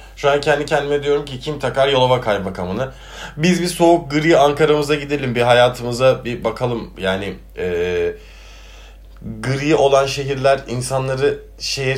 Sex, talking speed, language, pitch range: male, 135 wpm, Turkish, 90-140 Hz